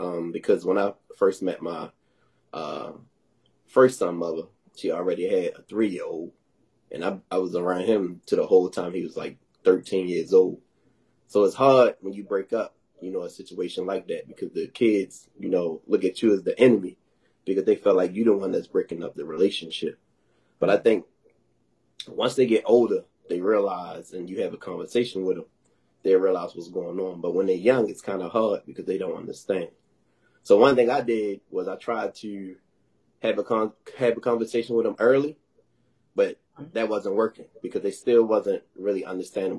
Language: English